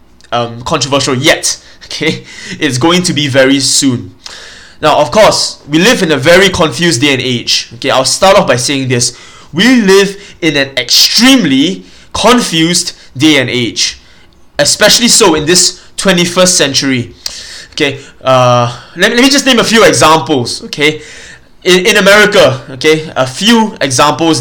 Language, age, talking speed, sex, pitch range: English, 20-39, 150 wpm, male, 135-200 Hz